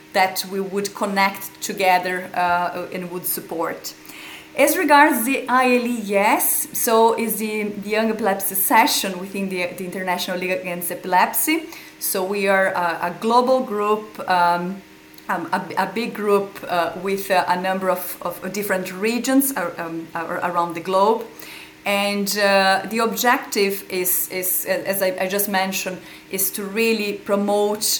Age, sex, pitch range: 30-49, female, 185-210 Hz